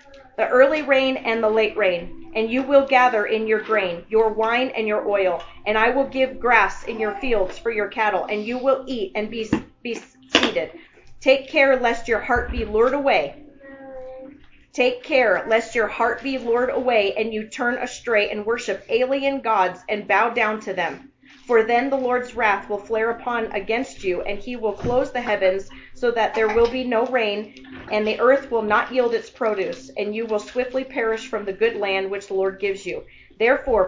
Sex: female